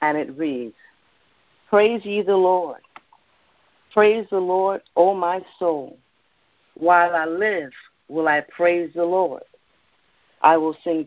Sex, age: female, 50-69